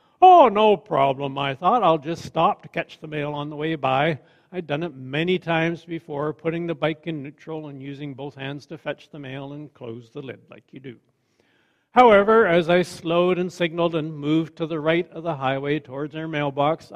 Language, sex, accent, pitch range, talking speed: English, male, American, 145-180 Hz, 210 wpm